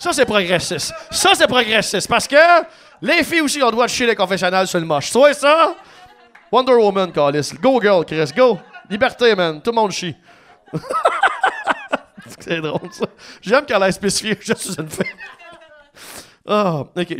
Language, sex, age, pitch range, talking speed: English, male, 30-49, 175-240 Hz, 170 wpm